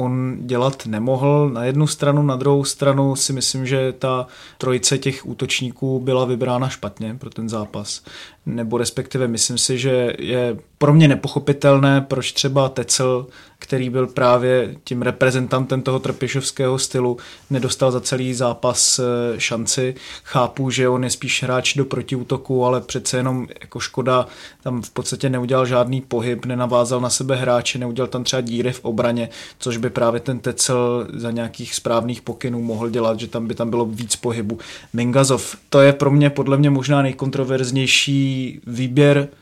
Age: 20-39